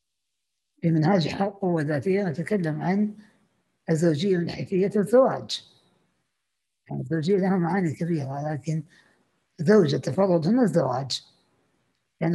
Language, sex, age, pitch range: Arabic, female, 60-79, 155-190 Hz